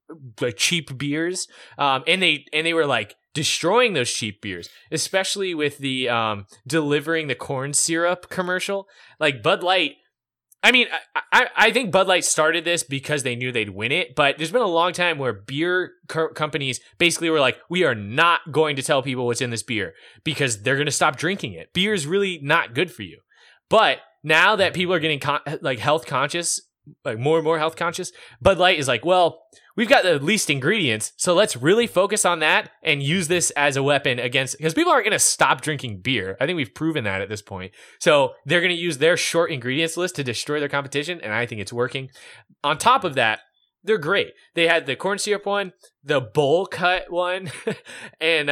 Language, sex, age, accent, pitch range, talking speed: English, male, 20-39, American, 130-175 Hz, 210 wpm